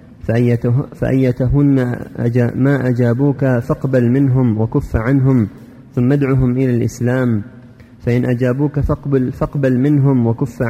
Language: Arabic